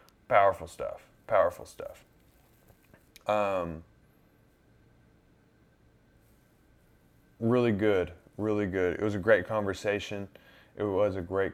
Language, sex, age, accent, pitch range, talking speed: English, male, 20-39, American, 95-115 Hz, 95 wpm